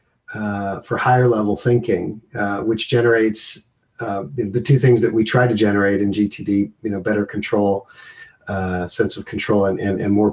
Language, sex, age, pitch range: English, male, 40-59, 105-120 Hz